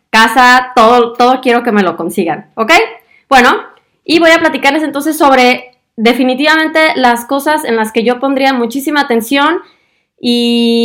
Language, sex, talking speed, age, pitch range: Spanish, female, 150 wpm, 20-39, 205-255 Hz